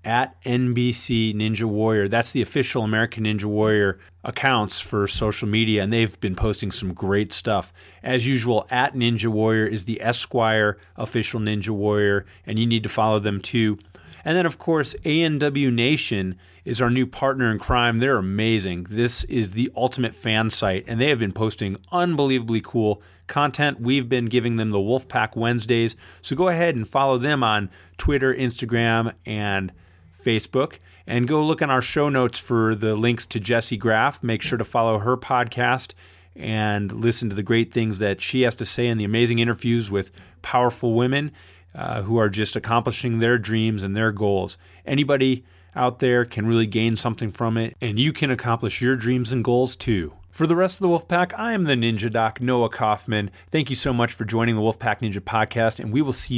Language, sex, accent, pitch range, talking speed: English, male, American, 105-125 Hz, 185 wpm